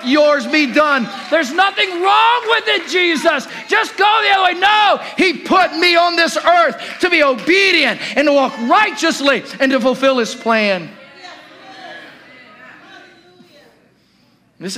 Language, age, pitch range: English, 40-59, 185-275 Hz